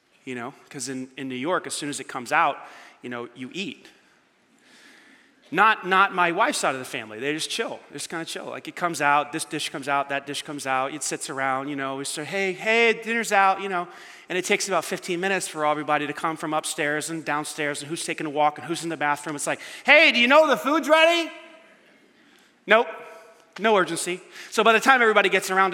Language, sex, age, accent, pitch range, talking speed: English, male, 30-49, American, 160-235 Hz, 235 wpm